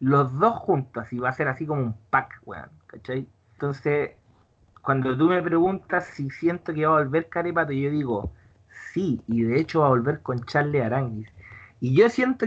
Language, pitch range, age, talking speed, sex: Spanish, 135-200 Hz, 30-49, 190 wpm, male